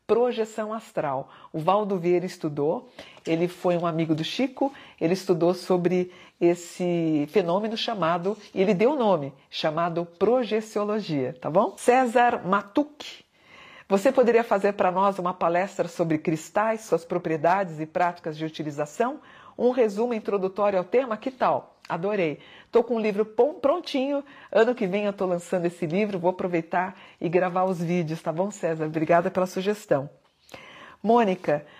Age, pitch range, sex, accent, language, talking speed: 50-69, 170-220 Hz, female, Brazilian, Portuguese, 145 wpm